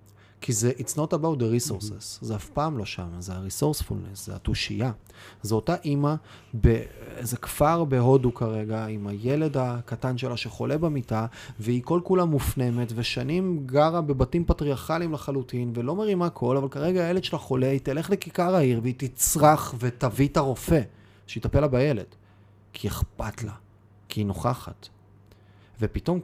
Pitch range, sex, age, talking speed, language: 105-140 Hz, male, 30-49, 150 wpm, Hebrew